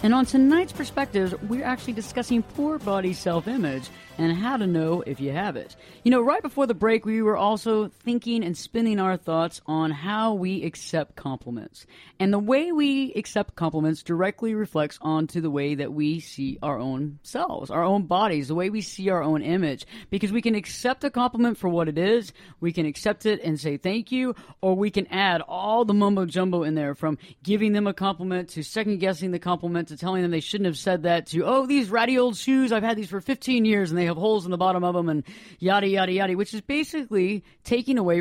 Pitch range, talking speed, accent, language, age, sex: 165-225 Hz, 215 wpm, American, English, 40-59, female